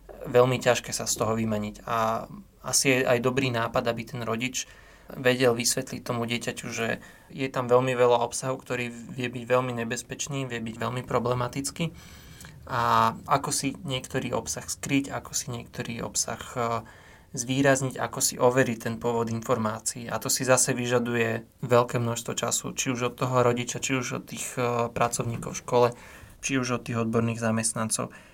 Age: 20-39